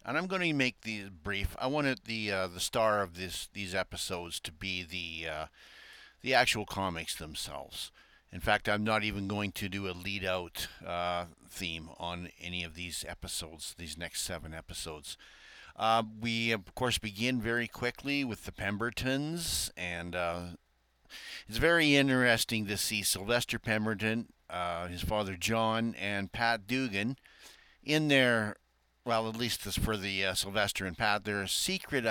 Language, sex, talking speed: English, male, 160 wpm